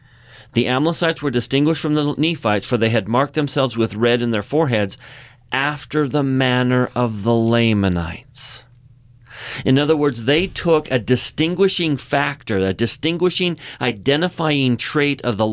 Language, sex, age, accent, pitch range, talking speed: English, male, 40-59, American, 115-140 Hz, 145 wpm